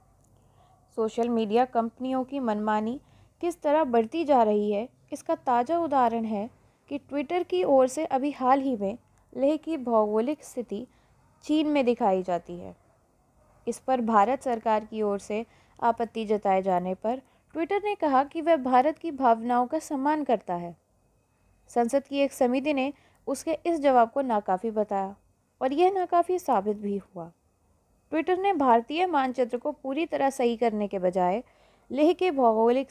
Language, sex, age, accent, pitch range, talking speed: Hindi, female, 20-39, native, 215-290 Hz, 155 wpm